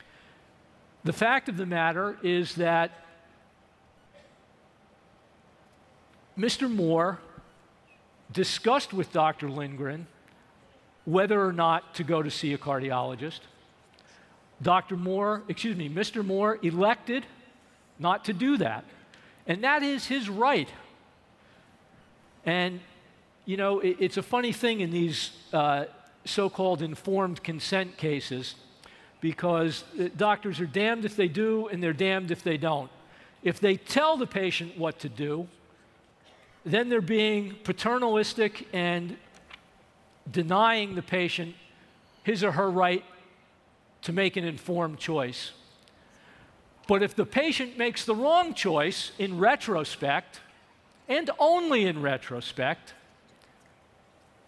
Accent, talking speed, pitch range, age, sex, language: American, 115 wpm, 165-210 Hz, 50-69, male, English